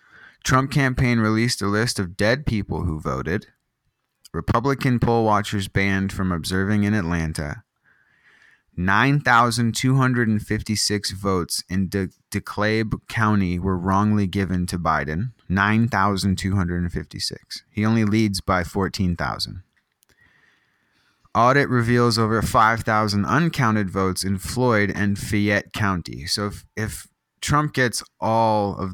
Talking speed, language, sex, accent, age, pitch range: 110 wpm, English, male, American, 20-39, 95-115 Hz